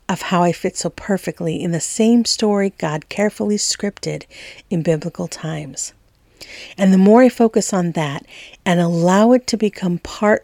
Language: English